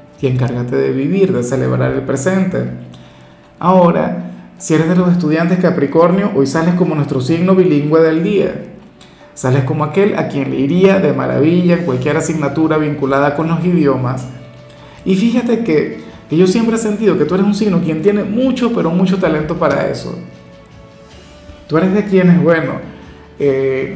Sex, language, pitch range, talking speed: male, Spanish, 130-175 Hz, 165 wpm